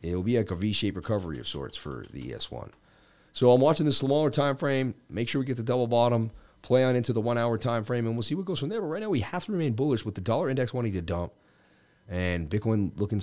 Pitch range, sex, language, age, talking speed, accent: 105-145 Hz, male, English, 30-49, 265 wpm, American